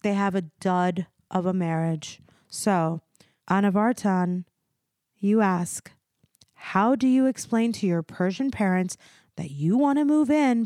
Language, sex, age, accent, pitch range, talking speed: English, female, 30-49, American, 190-245 Hz, 140 wpm